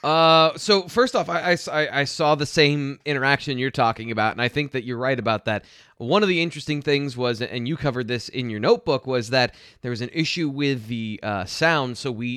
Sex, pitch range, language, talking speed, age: male, 120-150 Hz, English, 230 wpm, 20-39